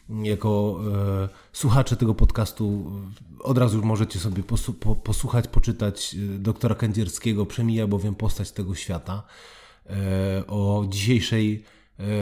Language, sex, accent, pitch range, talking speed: Polish, male, native, 100-120 Hz, 95 wpm